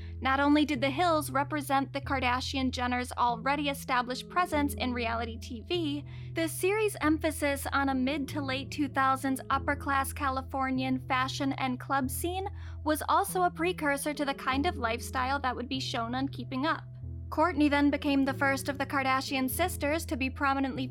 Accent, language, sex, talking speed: American, English, female, 155 wpm